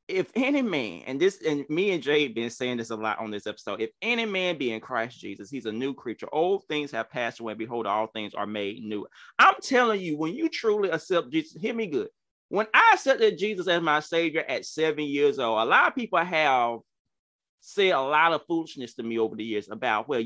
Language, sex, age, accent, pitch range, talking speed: English, male, 30-49, American, 150-255 Hz, 235 wpm